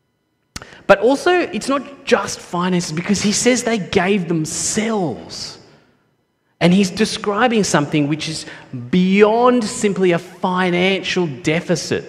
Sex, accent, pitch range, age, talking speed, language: male, Australian, 130-205 Hz, 30-49, 115 wpm, English